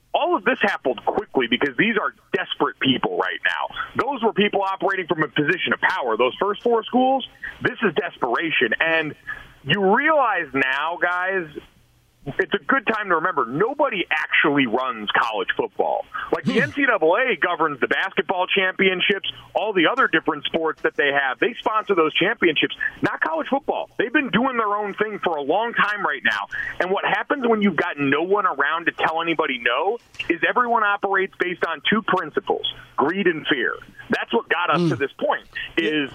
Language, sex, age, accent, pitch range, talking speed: English, male, 40-59, American, 160-225 Hz, 180 wpm